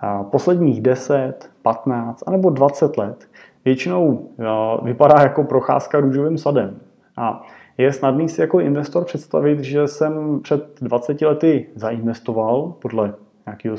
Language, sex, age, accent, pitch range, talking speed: Czech, male, 30-49, native, 115-145 Hz, 120 wpm